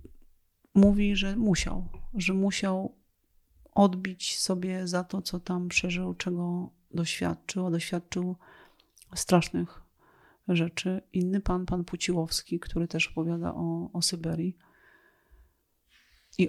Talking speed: 105 wpm